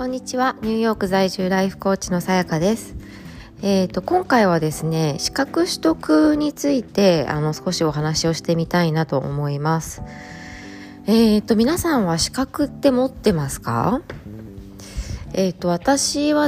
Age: 20-39